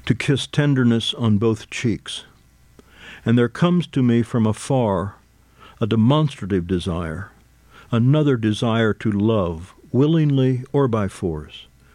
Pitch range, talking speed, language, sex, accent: 90-125 Hz, 120 wpm, English, male, American